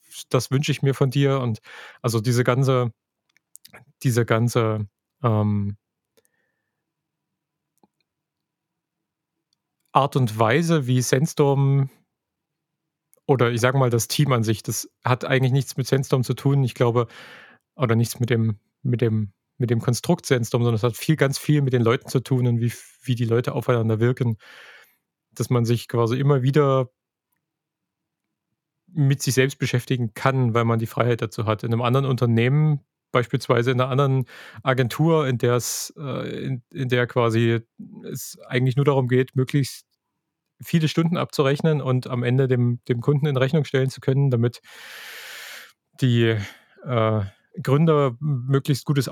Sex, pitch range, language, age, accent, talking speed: male, 120-140 Hz, German, 30-49, German, 150 wpm